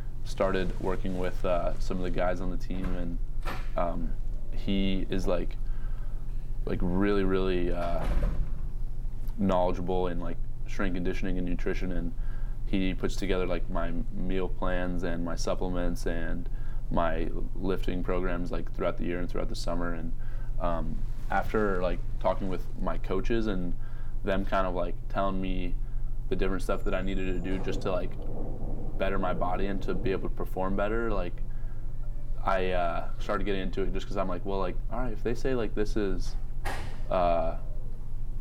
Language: English